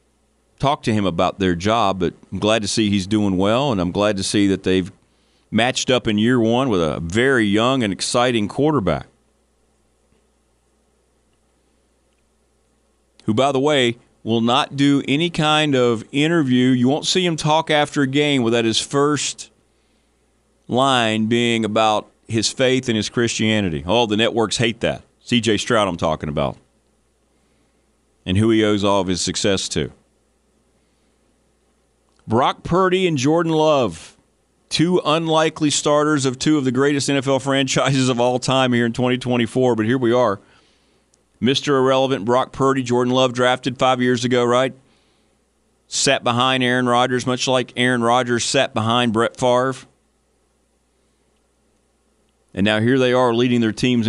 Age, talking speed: 40-59, 155 wpm